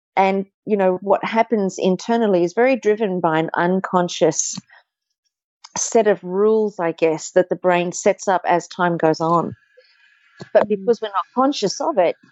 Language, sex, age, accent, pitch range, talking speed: English, female, 40-59, Australian, 170-220 Hz, 160 wpm